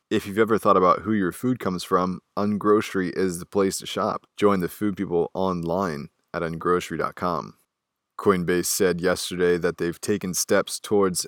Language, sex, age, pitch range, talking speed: English, male, 20-39, 85-95 Hz, 165 wpm